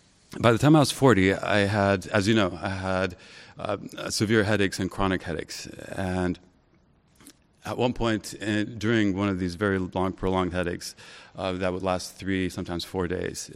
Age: 30-49